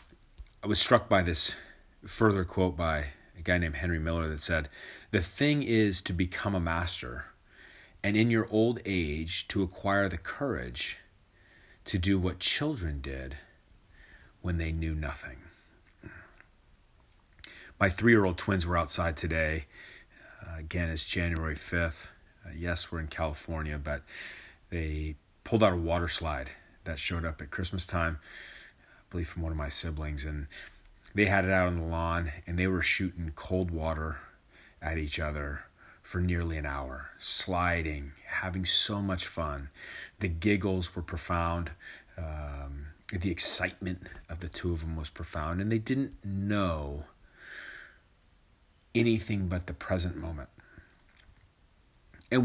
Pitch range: 80-95 Hz